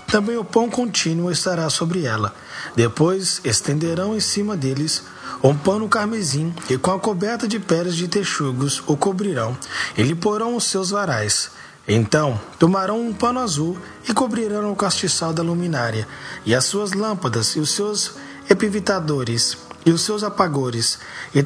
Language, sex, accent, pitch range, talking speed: English, male, Brazilian, 135-210 Hz, 155 wpm